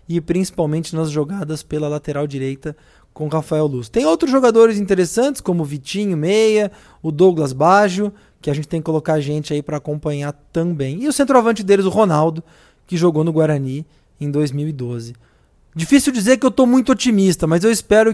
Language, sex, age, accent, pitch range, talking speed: Portuguese, male, 20-39, Brazilian, 155-195 Hz, 180 wpm